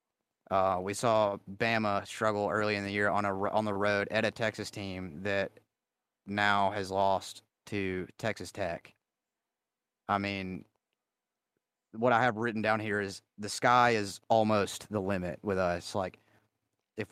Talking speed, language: 155 wpm, English